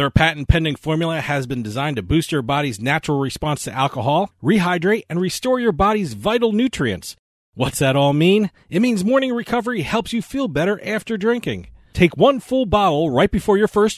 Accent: American